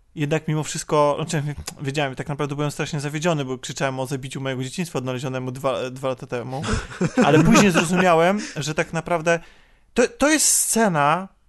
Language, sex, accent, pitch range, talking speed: Polish, male, native, 140-175 Hz, 160 wpm